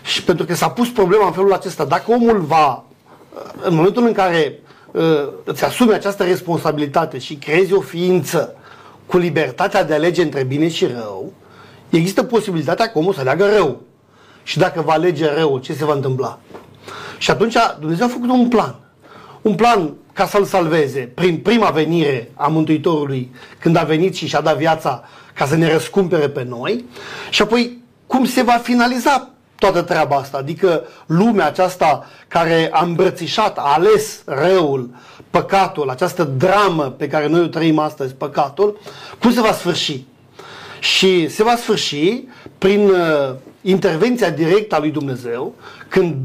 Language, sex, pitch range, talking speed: Romanian, male, 150-200 Hz, 160 wpm